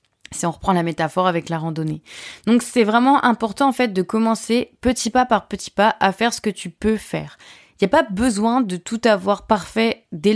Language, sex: French, female